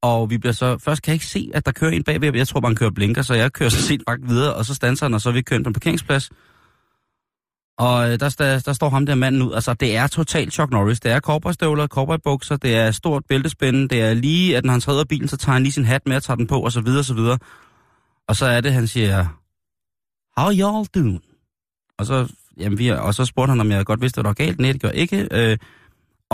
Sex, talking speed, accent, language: male, 275 wpm, native, Danish